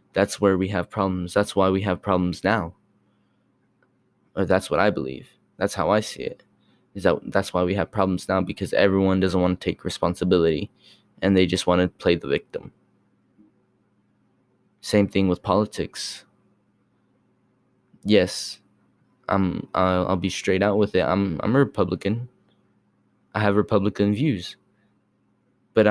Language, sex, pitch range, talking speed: English, male, 90-100 Hz, 150 wpm